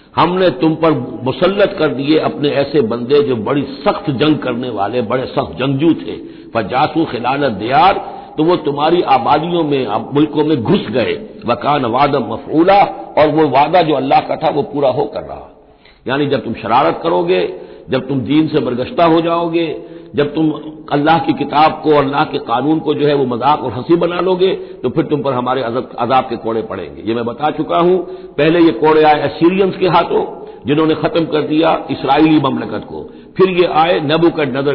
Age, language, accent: 60-79, Hindi, native